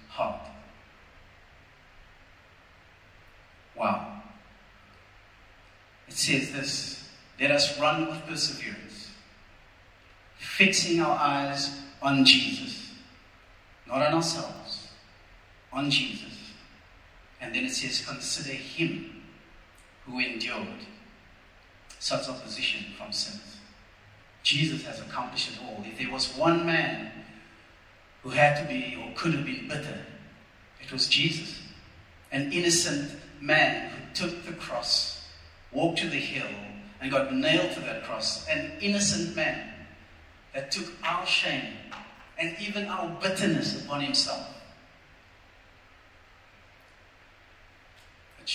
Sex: male